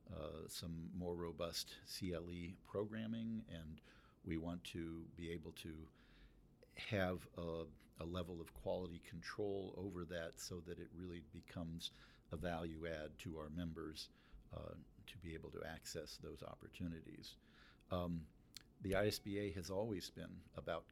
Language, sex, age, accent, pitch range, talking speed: English, male, 50-69, American, 80-95 Hz, 140 wpm